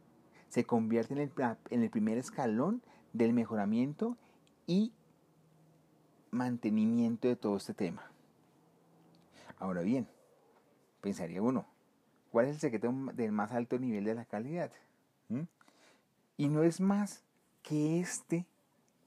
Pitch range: 120-175 Hz